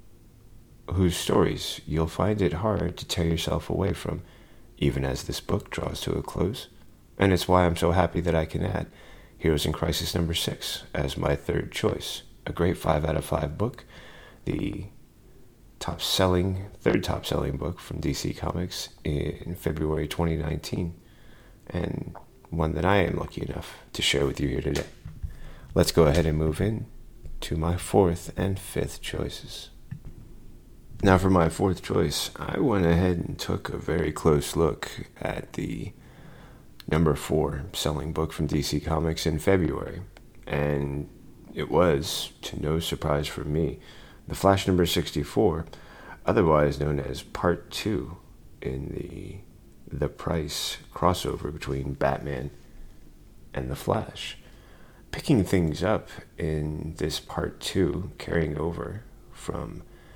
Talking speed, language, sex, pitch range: 145 wpm, English, male, 75-90 Hz